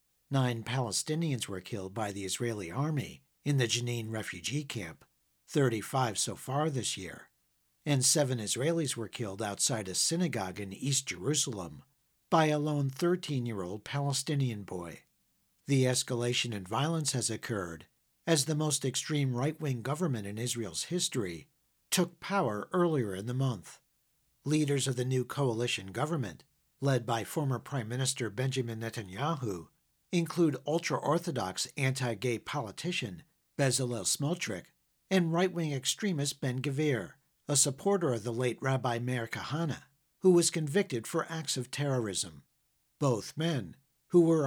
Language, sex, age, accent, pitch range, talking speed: English, male, 50-69, American, 115-155 Hz, 135 wpm